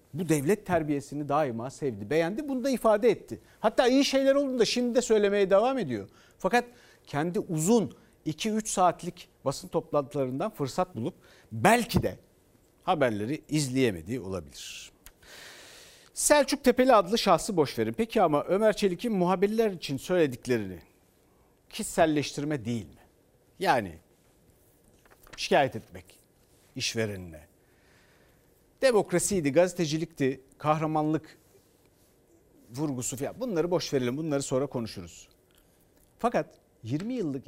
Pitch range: 120-185 Hz